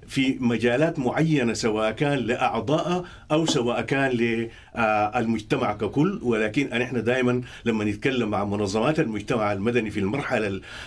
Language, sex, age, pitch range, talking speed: English, male, 50-69, 110-150 Hz, 120 wpm